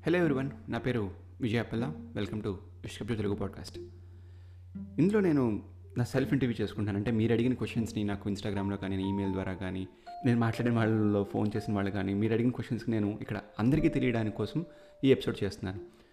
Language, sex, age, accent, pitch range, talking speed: Telugu, male, 30-49, native, 100-125 Hz, 165 wpm